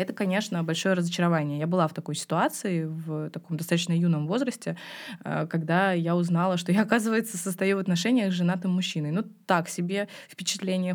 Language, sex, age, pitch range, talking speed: Russian, female, 20-39, 170-215 Hz, 165 wpm